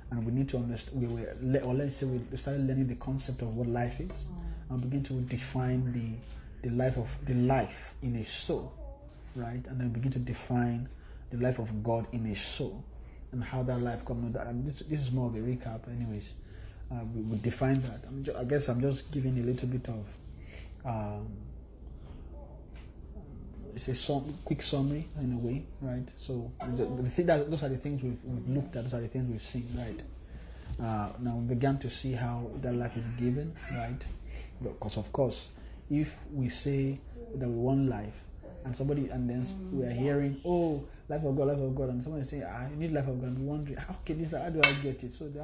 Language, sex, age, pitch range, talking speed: English, male, 30-49, 115-135 Hz, 210 wpm